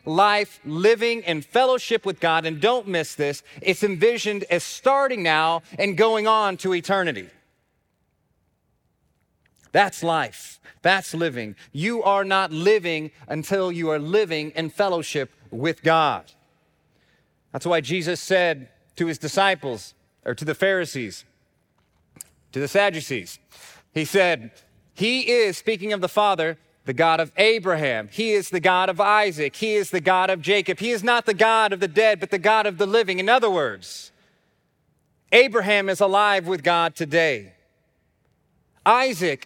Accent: American